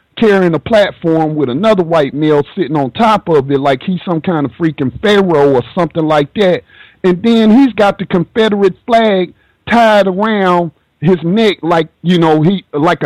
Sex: male